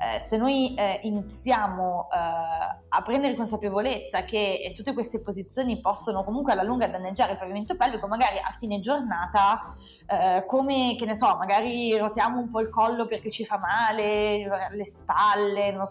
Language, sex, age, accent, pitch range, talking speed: Italian, female, 20-39, native, 195-230 Hz, 170 wpm